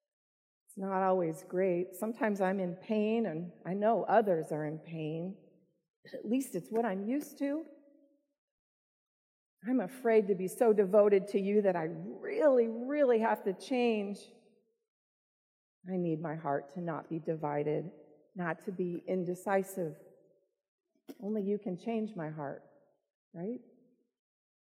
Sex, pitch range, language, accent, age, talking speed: female, 180-255 Hz, English, American, 40-59, 135 wpm